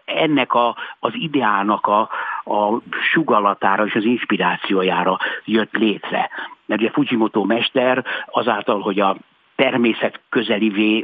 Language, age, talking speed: Hungarian, 60-79, 110 wpm